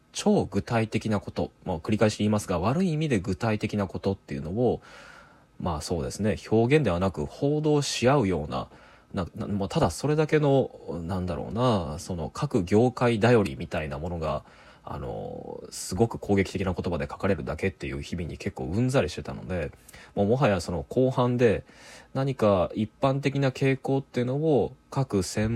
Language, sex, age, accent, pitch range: Japanese, male, 20-39, native, 90-125 Hz